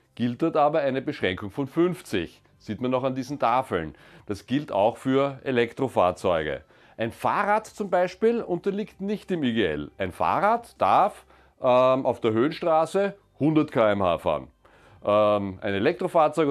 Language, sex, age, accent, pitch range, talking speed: German, male, 30-49, German, 110-150 Hz, 140 wpm